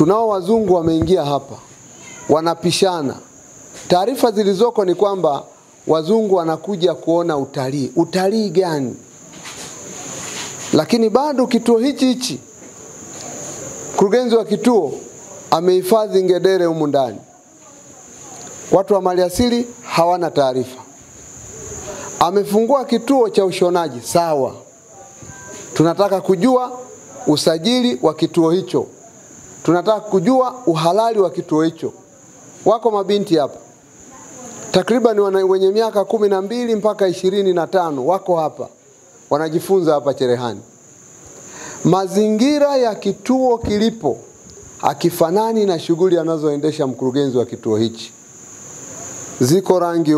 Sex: male